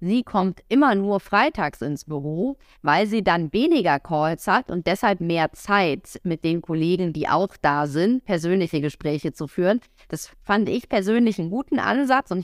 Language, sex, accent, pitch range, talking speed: German, female, German, 145-195 Hz, 175 wpm